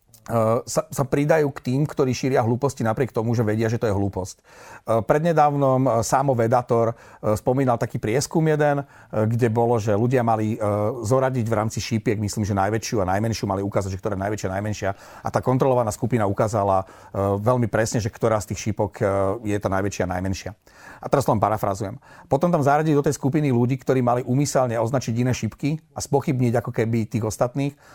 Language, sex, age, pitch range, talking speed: Slovak, male, 40-59, 115-140 Hz, 180 wpm